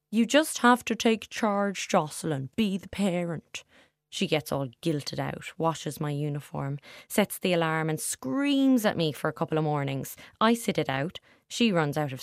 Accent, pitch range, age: Irish, 150-195 Hz, 20-39